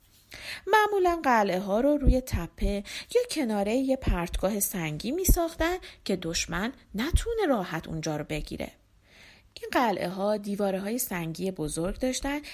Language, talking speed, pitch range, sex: Persian, 135 wpm, 180-295 Hz, female